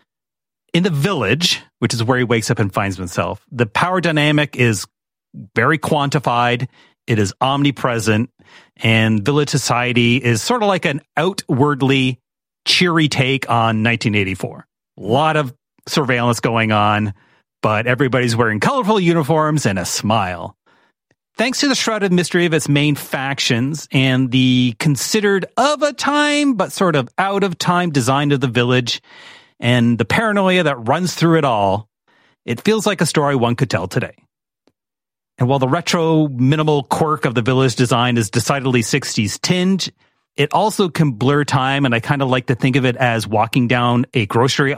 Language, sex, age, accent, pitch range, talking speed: English, male, 40-59, American, 120-155 Hz, 165 wpm